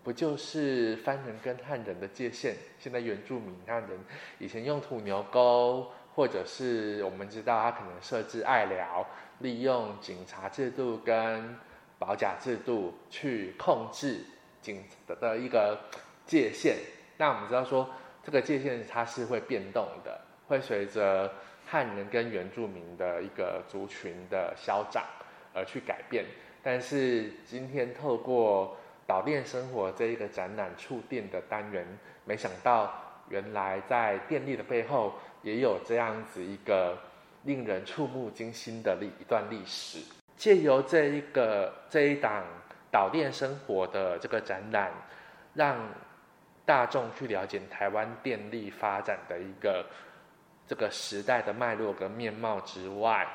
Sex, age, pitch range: male, 20-39, 100-130 Hz